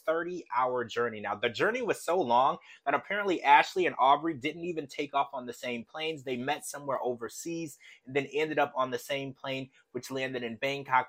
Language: English